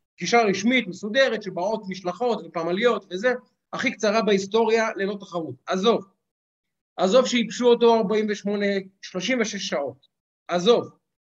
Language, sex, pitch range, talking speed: Hebrew, male, 180-225 Hz, 105 wpm